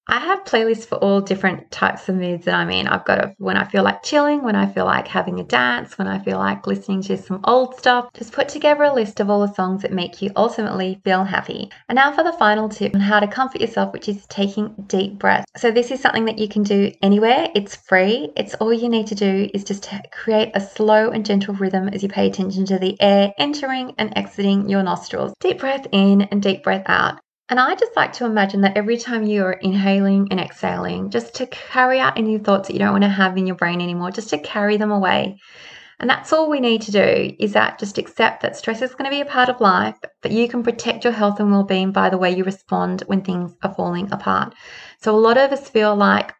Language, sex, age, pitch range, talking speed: English, female, 20-39, 195-235 Hz, 250 wpm